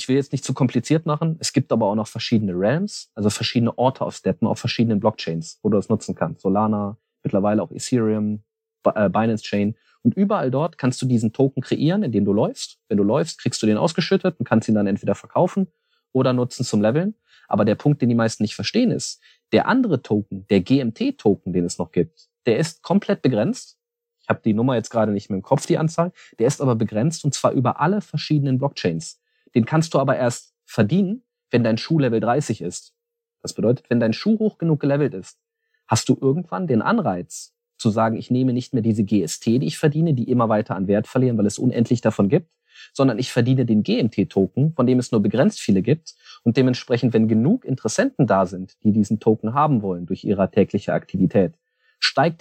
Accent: German